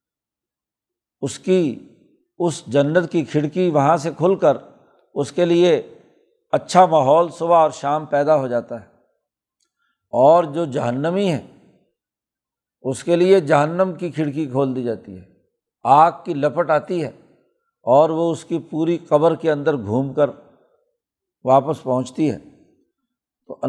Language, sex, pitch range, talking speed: Urdu, male, 145-185 Hz, 140 wpm